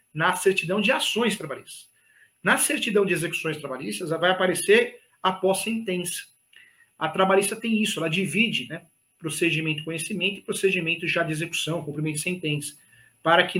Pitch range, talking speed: 155-195 Hz, 155 wpm